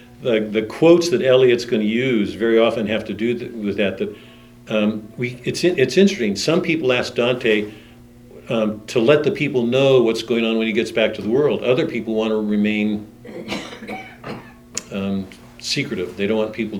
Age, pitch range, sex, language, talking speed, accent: 50-69, 105-120 Hz, male, English, 190 wpm, American